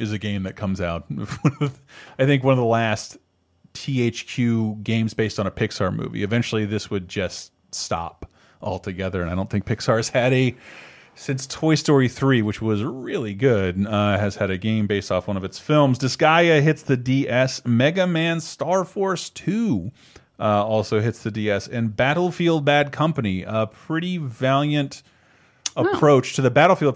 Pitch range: 105-135 Hz